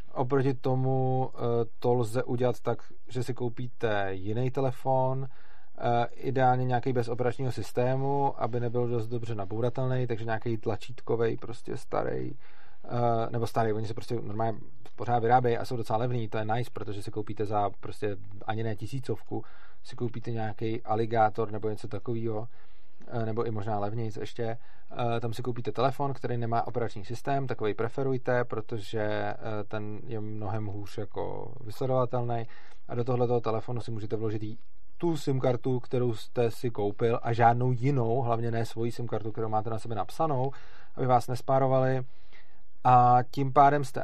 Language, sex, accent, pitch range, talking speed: Czech, male, native, 110-130 Hz, 155 wpm